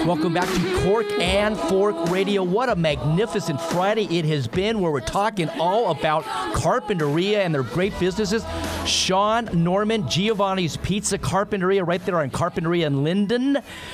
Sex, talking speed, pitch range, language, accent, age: male, 150 wpm, 165-200 Hz, English, American, 50-69